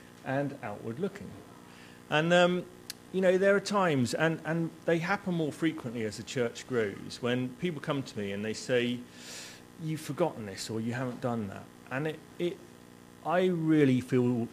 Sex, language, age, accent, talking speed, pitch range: male, English, 40-59, British, 175 wpm, 95-140 Hz